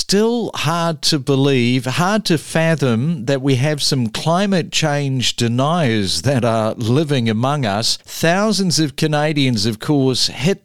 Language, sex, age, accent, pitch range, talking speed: English, male, 50-69, Australian, 120-150 Hz, 140 wpm